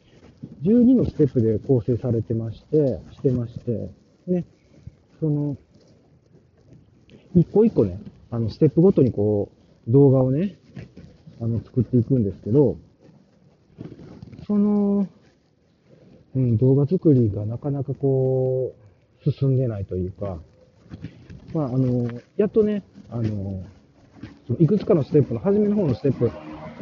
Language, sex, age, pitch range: Japanese, male, 40-59, 105-150 Hz